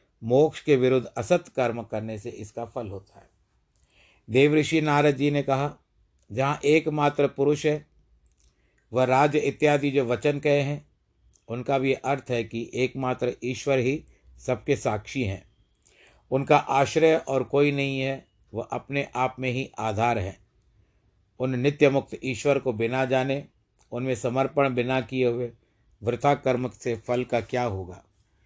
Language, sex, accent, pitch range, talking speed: Hindi, male, native, 110-140 Hz, 150 wpm